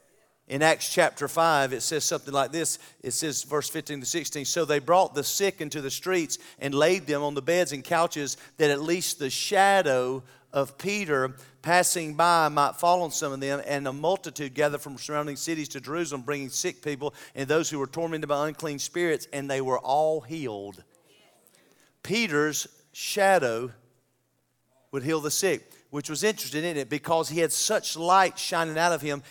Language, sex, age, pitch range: English, male, 40-59, 140-175 Hz